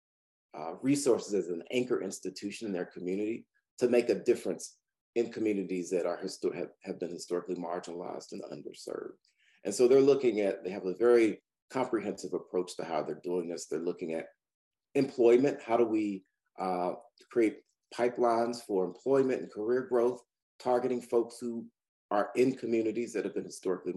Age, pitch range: 40-59, 95-125 Hz